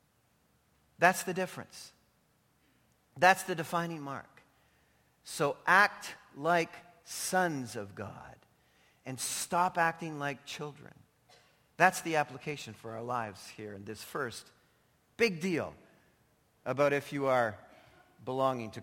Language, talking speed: English, 115 wpm